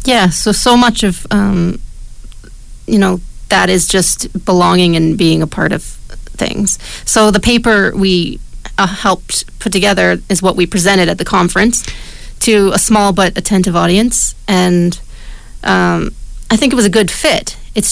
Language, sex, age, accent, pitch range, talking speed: English, female, 30-49, American, 180-215 Hz, 165 wpm